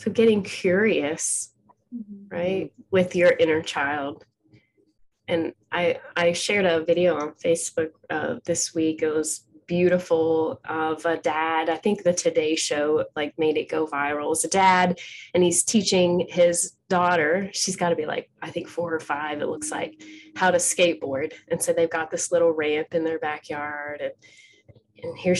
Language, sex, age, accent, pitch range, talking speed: English, female, 20-39, American, 160-190 Hz, 170 wpm